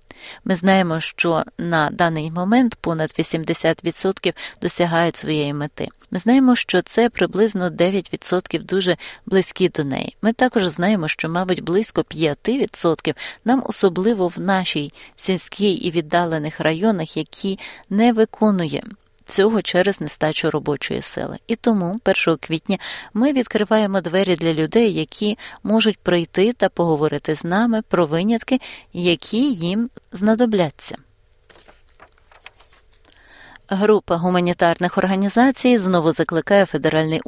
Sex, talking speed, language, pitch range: female, 115 wpm, Ukrainian, 160-205 Hz